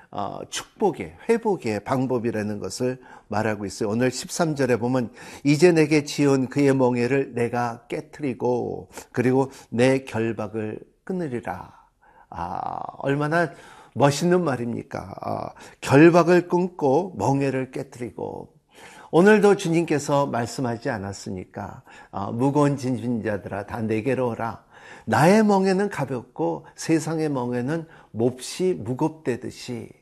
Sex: male